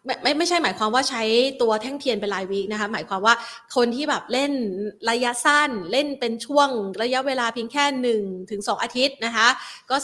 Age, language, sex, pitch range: 30-49, Thai, female, 200-250 Hz